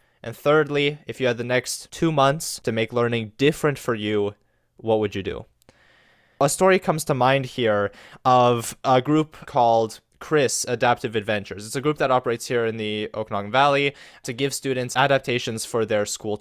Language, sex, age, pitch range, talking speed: English, male, 20-39, 110-140 Hz, 180 wpm